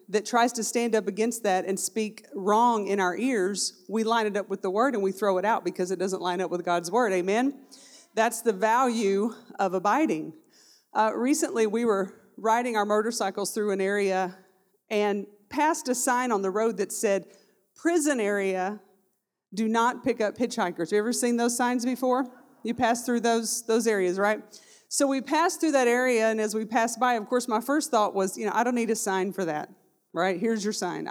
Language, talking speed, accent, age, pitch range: English, 210 wpm, American, 40-59, 205-245 Hz